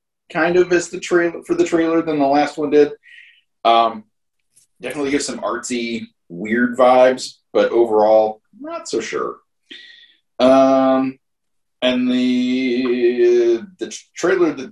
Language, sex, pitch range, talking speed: English, male, 115-175 Hz, 125 wpm